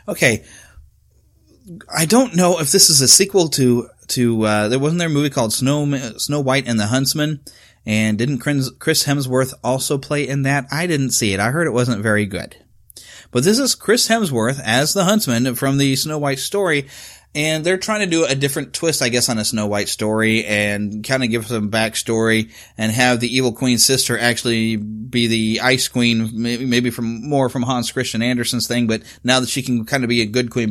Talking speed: 210 wpm